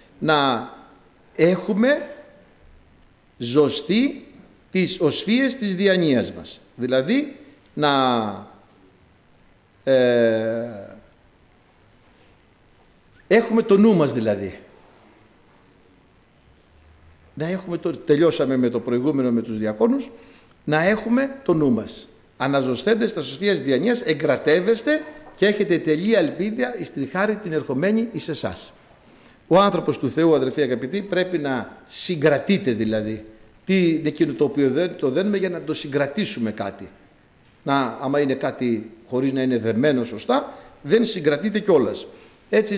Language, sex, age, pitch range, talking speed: Greek, male, 60-79, 115-190 Hz, 115 wpm